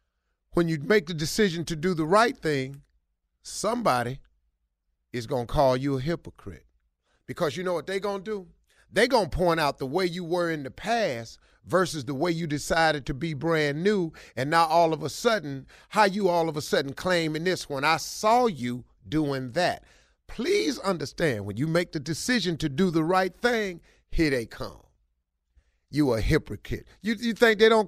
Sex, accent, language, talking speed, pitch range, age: male, American, English, 195 wpm, 135-200 Hz, 40-59